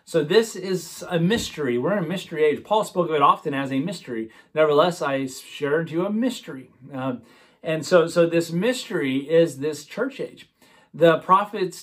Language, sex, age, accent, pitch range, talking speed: English, male, 30-49, American, 130-170 Hz, 190 wpm